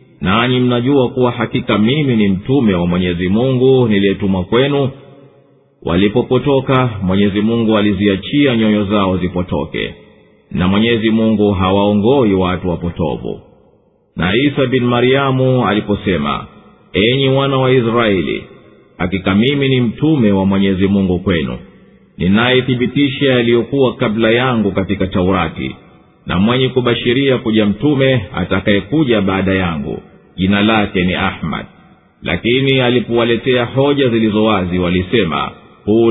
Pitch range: 95-125 Hz